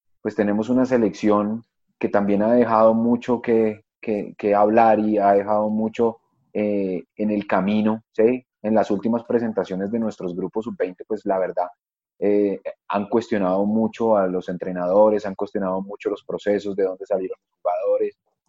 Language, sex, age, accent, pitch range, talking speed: Spanish, male, 30-49, Colombian, 95-115 Hz, 160 wpm